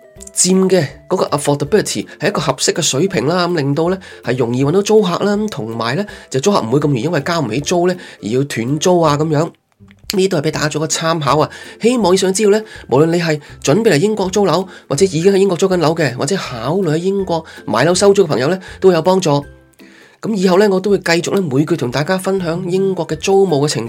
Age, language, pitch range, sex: 20-39, Chinese, 145-190 Hz, male